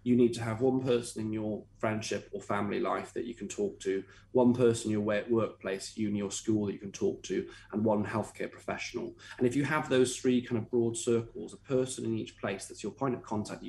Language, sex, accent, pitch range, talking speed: English, male, British, 110-130 Hz, 245 wpm